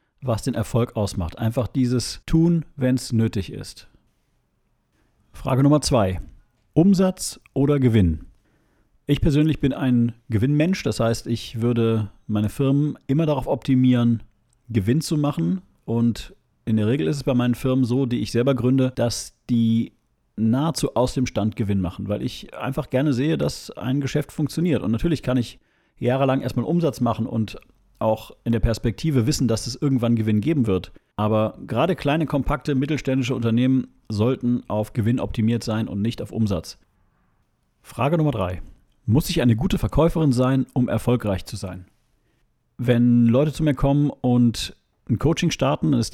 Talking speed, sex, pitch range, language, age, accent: 165 wpm, male, 110-135 Hz, German, 40-59, German